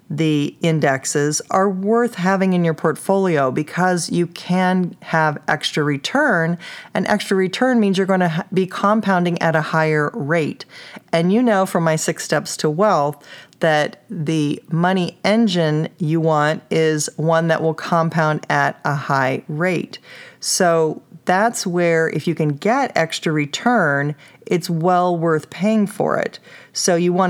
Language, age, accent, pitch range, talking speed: English, 40-59, American, 155-190 Hz, 150 wpm